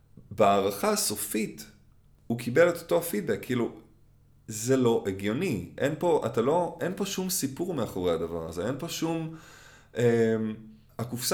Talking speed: 140 wpm